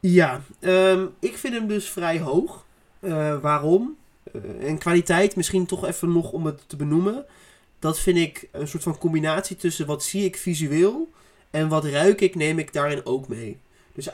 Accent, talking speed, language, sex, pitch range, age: Dutch, 180 wpm, Dutch, male, 155-195 Hz, 20-39